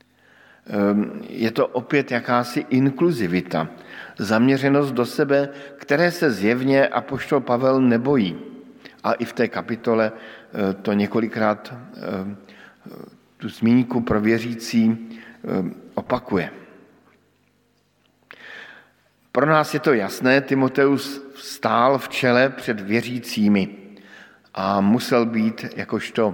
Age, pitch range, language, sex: 50-69, 110-135 Hz, Slovak, male